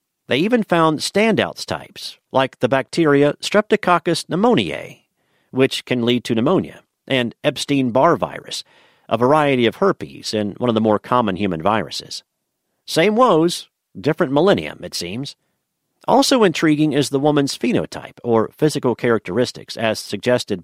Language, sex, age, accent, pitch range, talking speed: English, male, 50-69, American, 110-145 Hz, 135 wpm